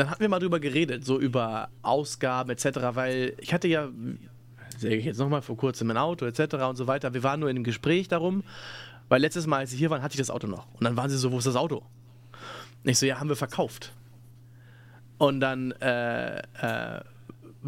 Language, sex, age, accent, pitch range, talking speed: German, male, 30-49, German, 120-150 Hz, 215 wpm